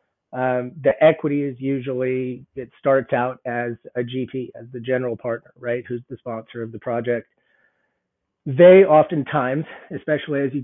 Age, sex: 30-49, male